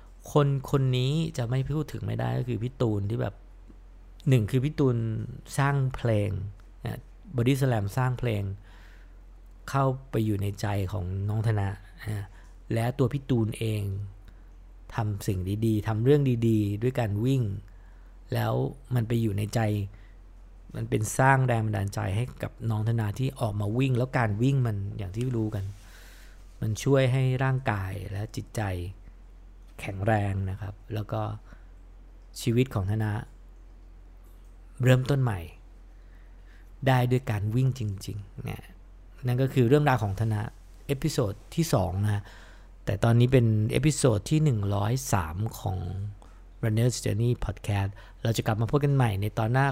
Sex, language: male, English